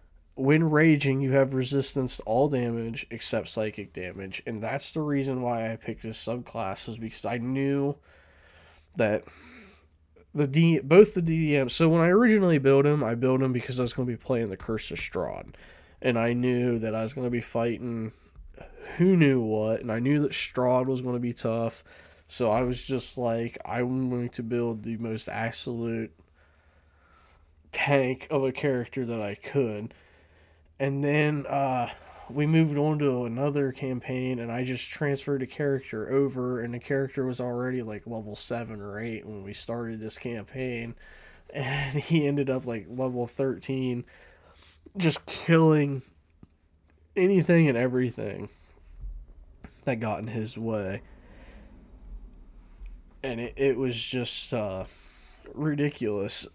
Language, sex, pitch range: English, male, 110-135 Hz